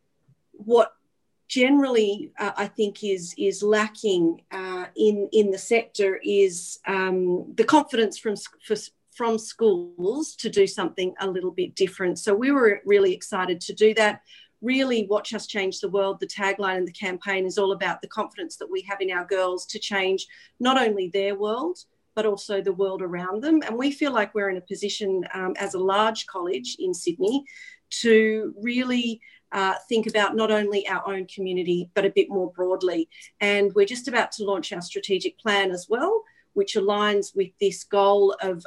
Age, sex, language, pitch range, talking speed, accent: 40-59, female, English, 190-220 Hz, 180 wpm, Australian